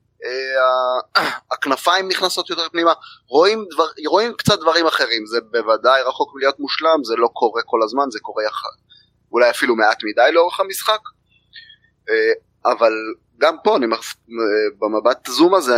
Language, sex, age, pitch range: Hebrew, male, 20-39, 125-175 Hz